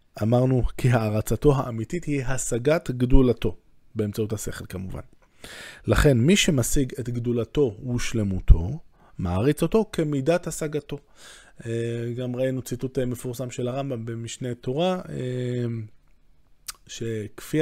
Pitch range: 110-140 Hz